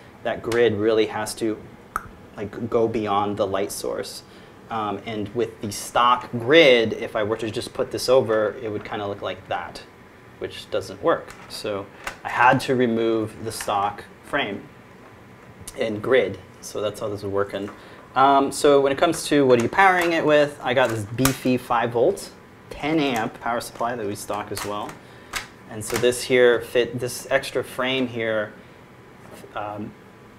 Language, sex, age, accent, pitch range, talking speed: English, male, 30-49, American, 110-130 Hz, 175 wpm